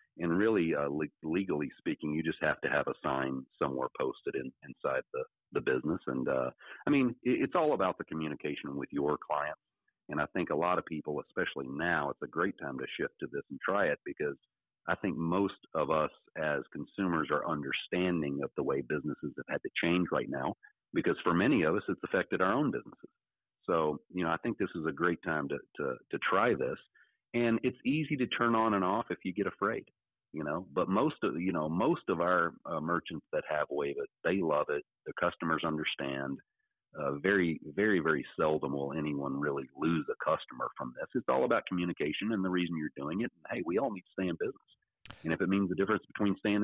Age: 40-59